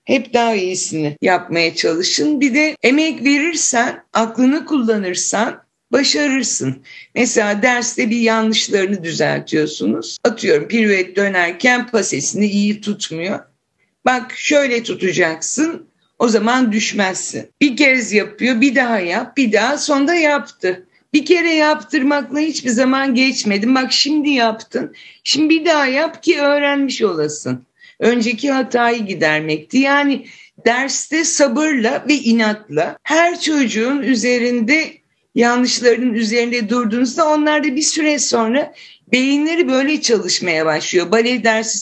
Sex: female